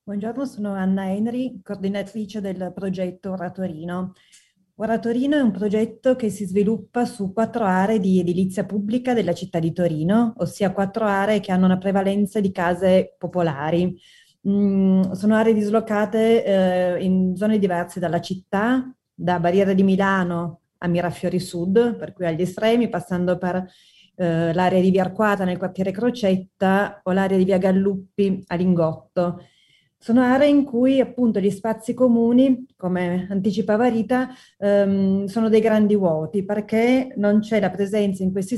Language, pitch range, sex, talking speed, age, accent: Italian, 185-220 Hz, female, 150 wpm, 30-49, native